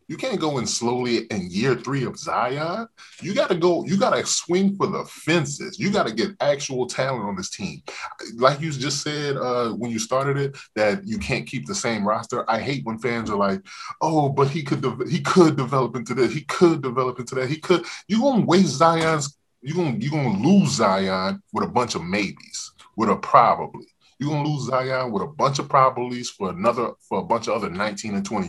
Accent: American